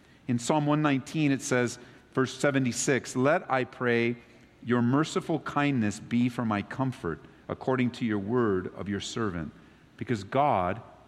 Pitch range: 105-150 Hz